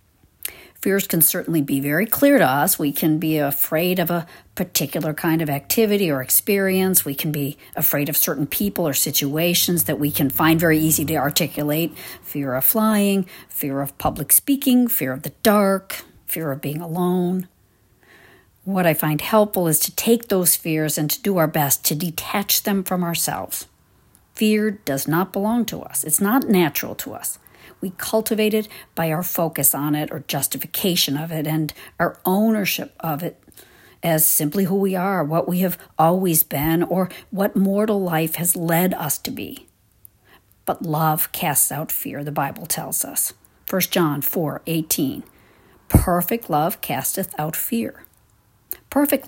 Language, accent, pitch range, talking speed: English, American, 155-195 Hz, 165 wpm